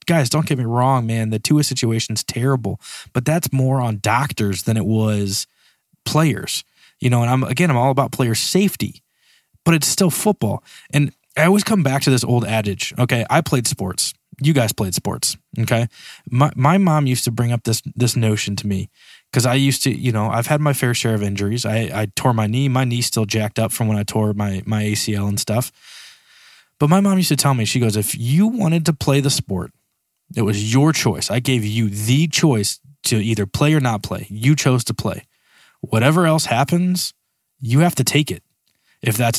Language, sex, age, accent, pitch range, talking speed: English, male, 20-39, American, 110-145 Hz, 215 wpm